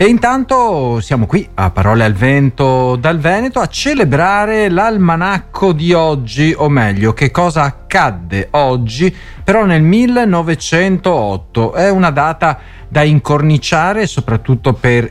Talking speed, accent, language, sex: 125 wpm, native, Italian, male